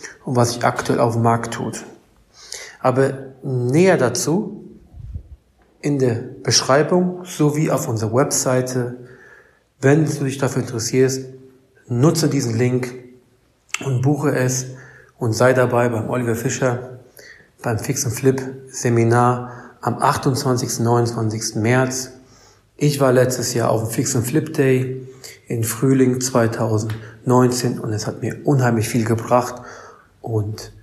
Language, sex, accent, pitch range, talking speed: German, male, German, 115-135 Hz, 125 wpm